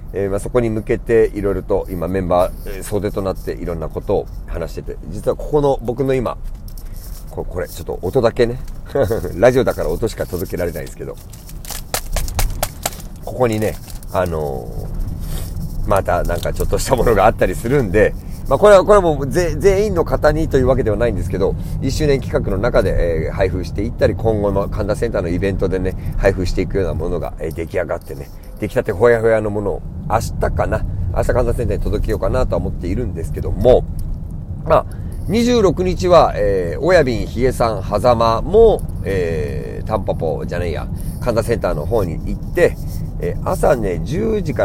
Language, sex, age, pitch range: Japanese, male, 40-59, 95-135 Hz